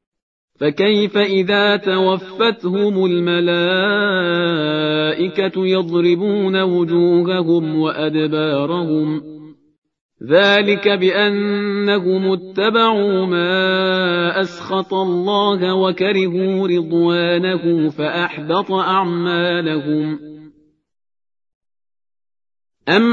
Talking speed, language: 45 wpm, Persian